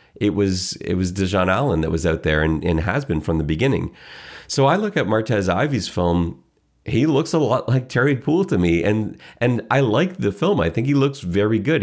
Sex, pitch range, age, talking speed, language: male, 85-120 Hz, 30-49, 230 wpm, English